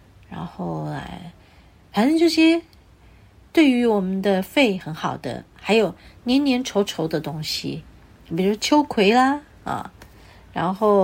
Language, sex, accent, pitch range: Chinese, female, native, 160-255 Hz